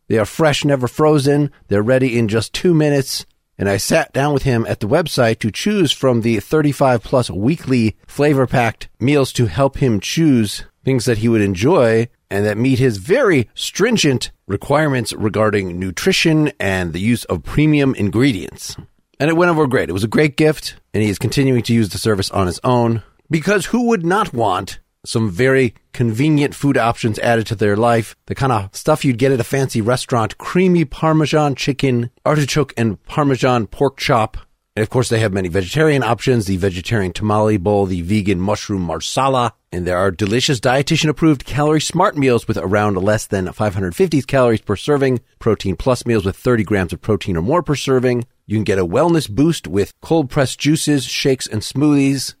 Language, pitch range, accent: English, 105-145 Hz, American